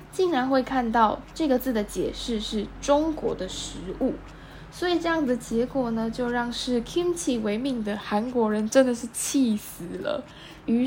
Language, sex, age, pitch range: Chinese, female, 10-29, 210-270 Hz